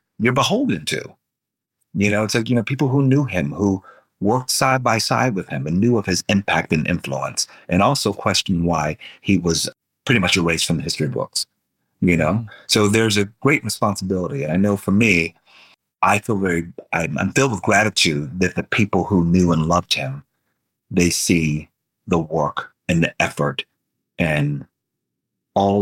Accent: American